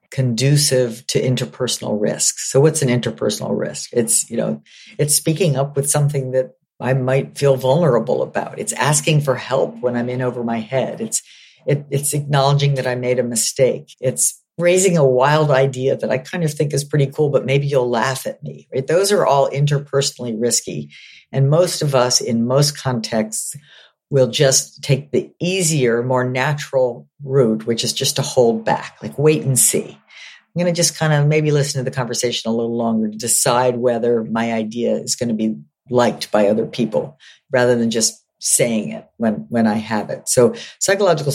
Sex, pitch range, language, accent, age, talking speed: female, 120-150 Hz, English, American, 50-69, 190 wpm